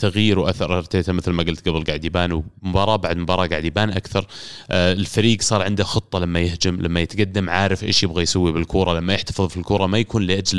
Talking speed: 200 wpm